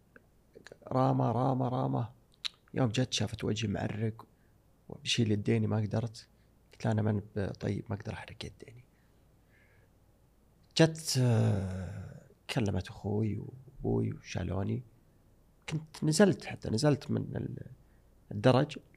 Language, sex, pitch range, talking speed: Arabic, male, 110-130 Hz, 100 wpm